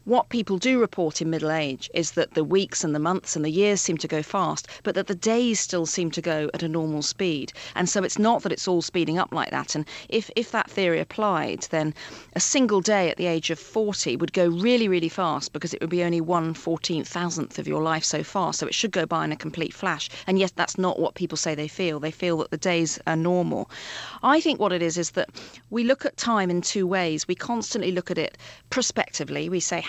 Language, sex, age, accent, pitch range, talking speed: English, female, 40-59, British, 160-195 Hz, 245 wpm